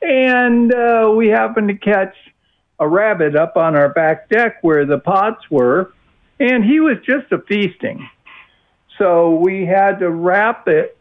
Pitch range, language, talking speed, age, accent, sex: 145-210 Hz, English, 160 wpm, 60-79, American, male